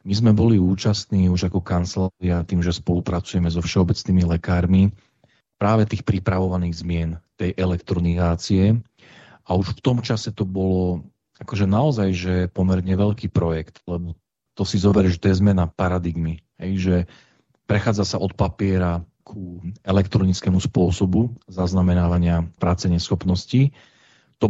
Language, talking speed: Slovak, 130 wpm